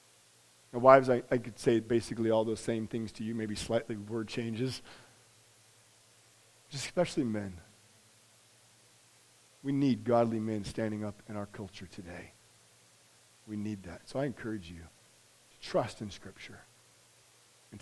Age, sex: 40-59, male